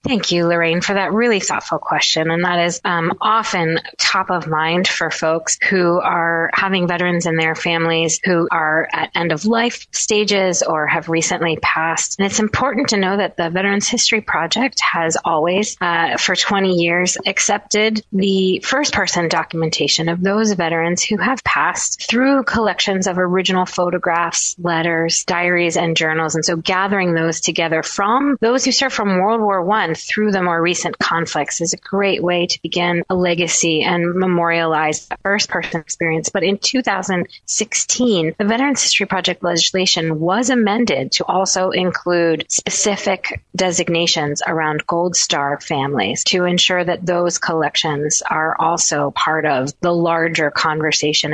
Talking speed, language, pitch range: 155 wpm, English, 165-200 Hz